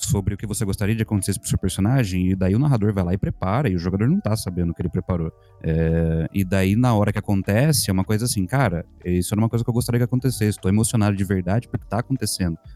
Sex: male